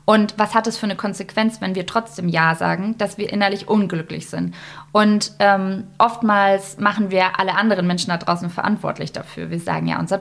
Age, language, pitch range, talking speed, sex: 20-39, German, 180-220 Hz, 195 wpm, female